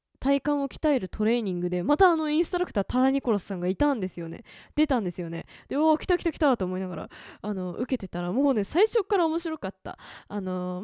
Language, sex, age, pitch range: Japanese, female, 20-39, 210-325 Hz